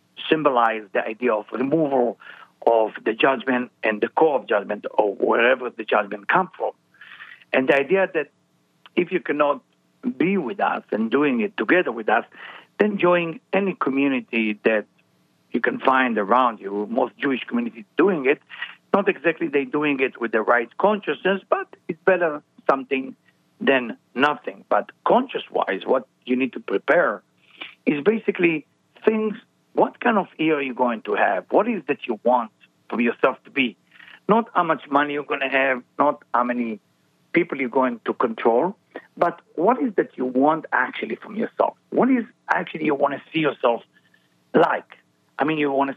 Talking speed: 170 wpm